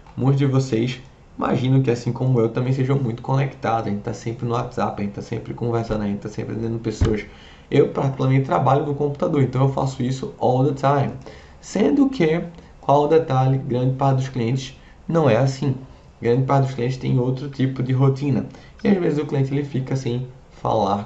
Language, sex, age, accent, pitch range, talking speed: Portuguese, male, 20-39, Brazilian, 120-145 Hz, 210 wpm